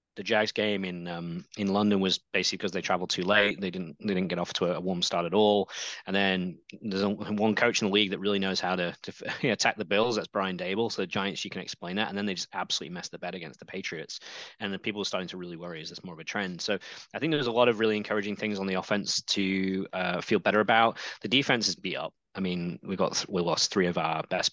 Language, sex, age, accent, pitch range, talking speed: English, male, 20-39, British, 90-105 Hz, 280 wpm